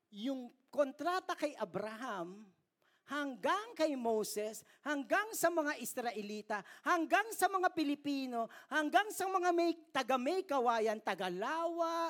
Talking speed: 120 wpm